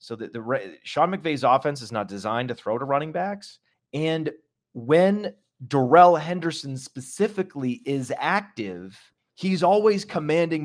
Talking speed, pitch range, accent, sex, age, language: 135 wpm, 115-155 Hz, American, male, 30-49, English